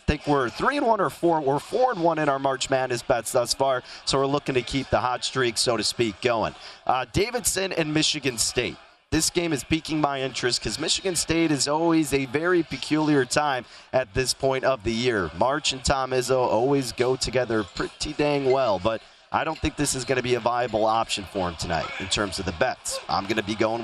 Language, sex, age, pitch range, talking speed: English, male, 30-49, 125-160 Hz, 230 wpm